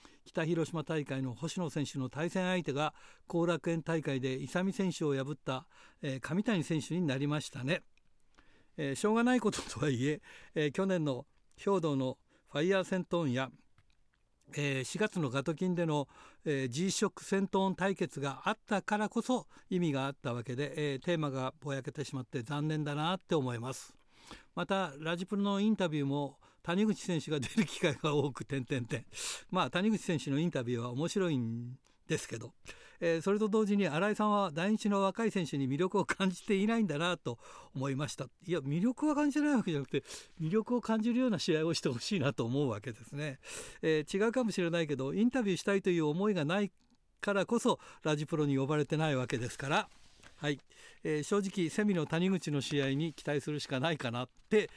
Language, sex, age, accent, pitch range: Japanese, male, 60-79, native, 140-190 Hz